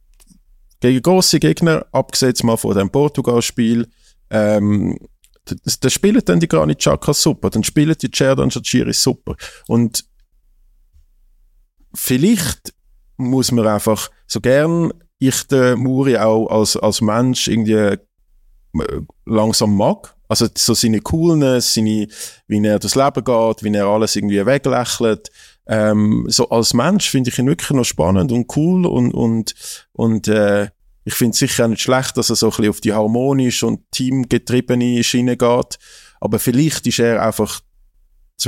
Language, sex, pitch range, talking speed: German, male, 105-130 Hz, 150 wpm